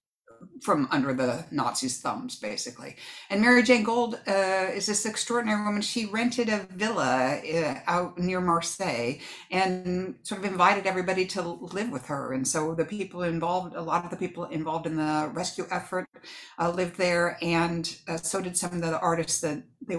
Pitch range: 145-180 Hz